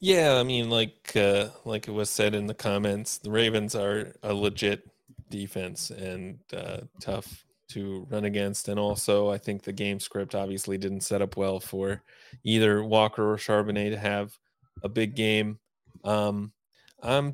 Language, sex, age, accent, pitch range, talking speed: English, male, 30-49, American, 95-110 Hz, 165 wpm